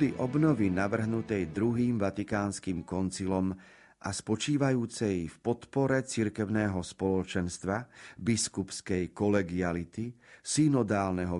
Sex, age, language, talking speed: male, 50-69, Slovak, 75 wpm